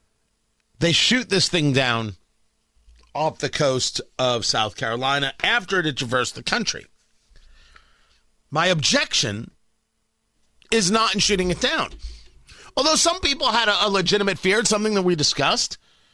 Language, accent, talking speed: English, American, 140 wpm